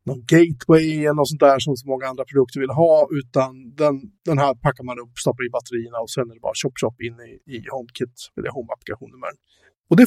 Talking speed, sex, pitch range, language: 220 wpm, male, 125-160 Hz, Swedish